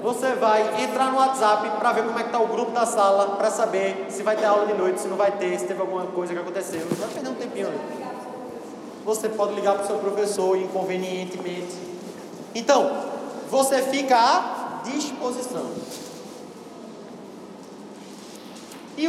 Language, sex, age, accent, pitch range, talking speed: Portuguese, male, 20-39, Brazilian, 200-255 Hz, 155 wpm